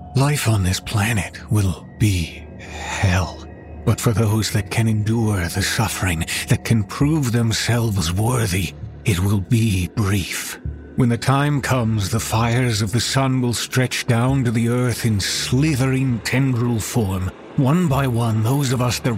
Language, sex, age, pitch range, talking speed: English, male, 50-69, 95-125 Hz, 155 wpm